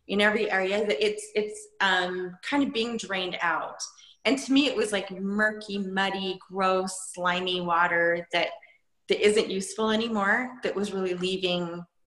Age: 20-39